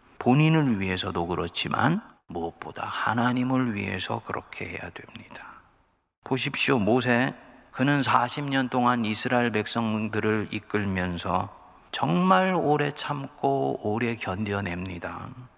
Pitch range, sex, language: 110-140 Hz, male, Korean